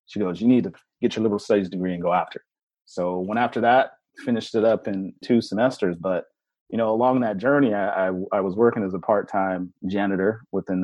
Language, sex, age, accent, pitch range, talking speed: English, male, 30-49, American, 95-120 Hz, 210 wpm